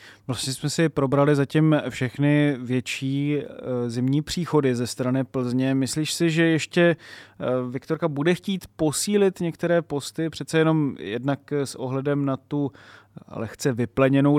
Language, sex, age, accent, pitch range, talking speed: Czech, male, 30-49, native, 125-140 Hz, 130 wpm